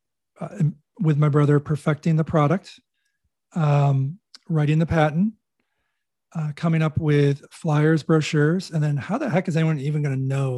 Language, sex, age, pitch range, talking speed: English, male, 40-59, 145-170 Hz, 160 wpm